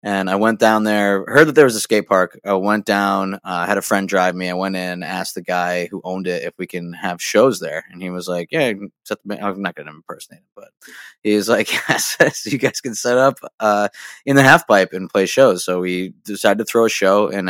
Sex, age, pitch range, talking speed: male, 20-39, 90-110 Hz, 255 wpm